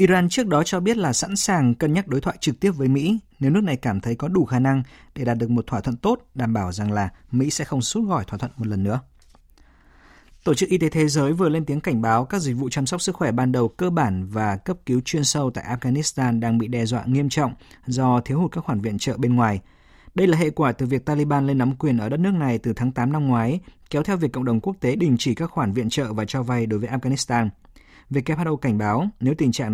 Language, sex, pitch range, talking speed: Vietnamese, male, 115-155 Hz, 270 wpm